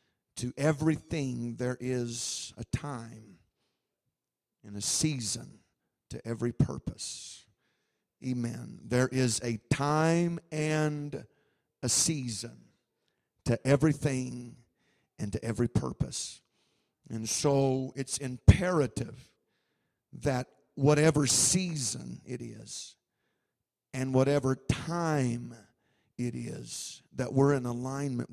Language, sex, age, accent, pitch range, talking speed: English, male, 50-69, American, 125-150 Hz, 95 wpm